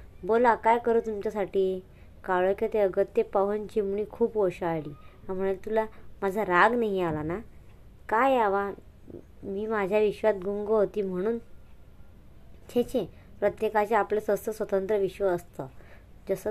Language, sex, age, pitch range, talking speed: Hindi, male, 20-39, 190-215 Hz, 115 wpm